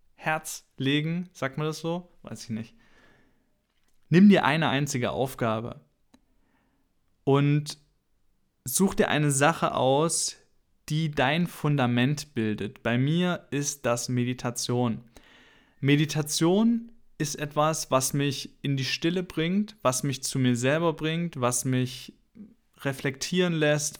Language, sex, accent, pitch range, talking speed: German, male, German, 125-155 Hz, 120 wpm